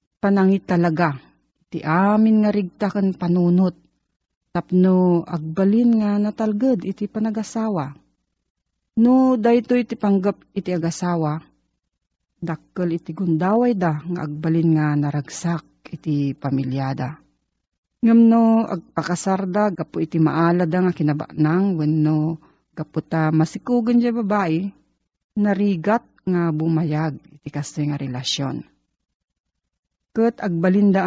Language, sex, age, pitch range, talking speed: Filipino, female, 40-59, 150-200 Hz, 100 wpm